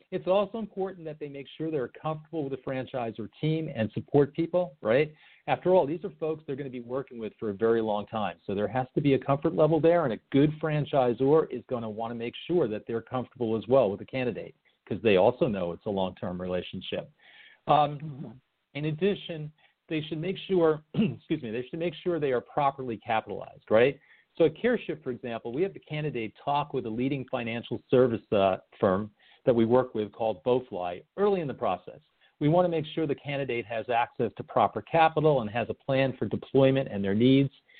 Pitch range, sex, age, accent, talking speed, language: 115-155 Hz, male, 50-69, American, 215 wpm, English